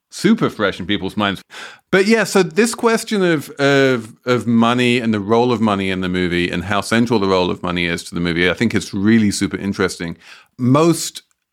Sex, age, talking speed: male, 40-59, 210 wpm